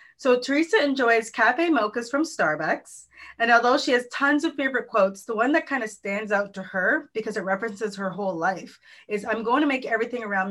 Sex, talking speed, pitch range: female, 210 wpm, 200-275 Hz